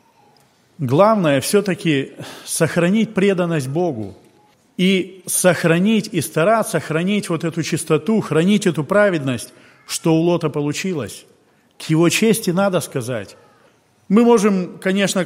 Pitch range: 150-200 Hz